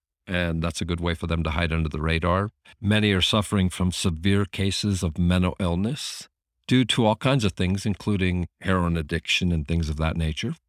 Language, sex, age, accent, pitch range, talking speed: English, male, 50-69, American, 80-95 Hz, 195 wpm